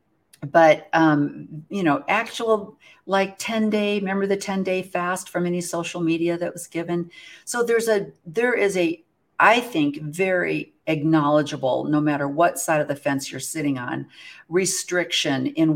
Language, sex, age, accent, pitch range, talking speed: English, female, 50-69, American, 145-175 Hz, 160 wpm